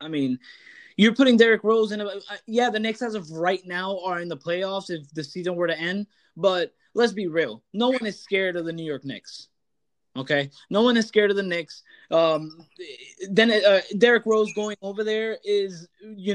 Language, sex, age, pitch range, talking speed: English, male, 20-39, 170-205 Hz, 210 wpm